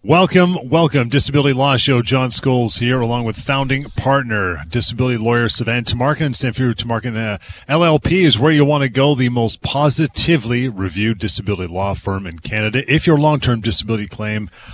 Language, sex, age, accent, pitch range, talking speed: English, male, 30-49, American, 100-130 Hz, 160 wpm